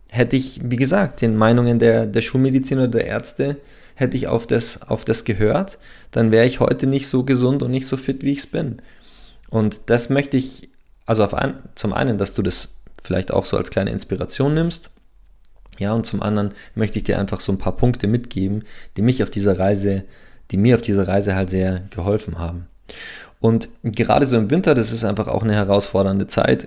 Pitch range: 100-120 Hz